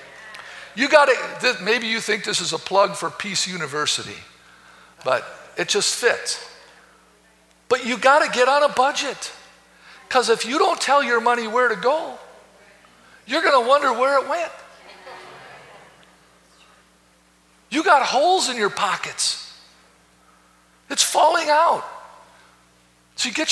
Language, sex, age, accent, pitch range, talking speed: English, male, 50-69, American, 170-275 Hz, 140 wpm